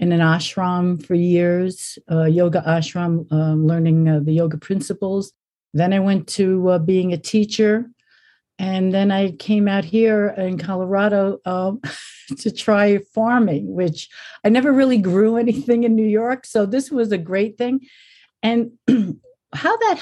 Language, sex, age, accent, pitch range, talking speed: English, female, 50-69, American, 175-230 Hz, 160 wpm